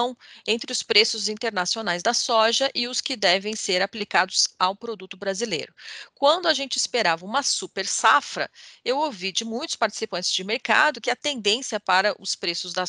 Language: English